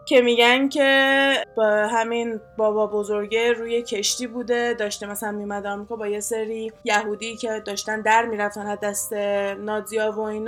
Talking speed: 150 wpm